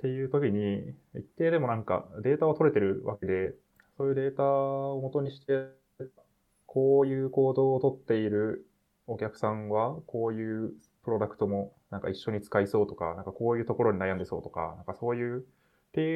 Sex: male